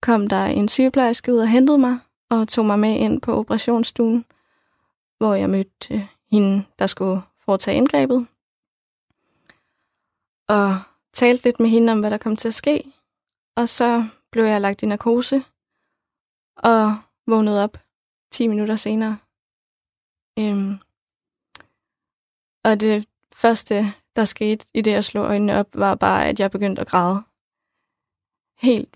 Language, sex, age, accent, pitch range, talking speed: Danish, female, 20-39, native, 205-235 Hz, 140 wpm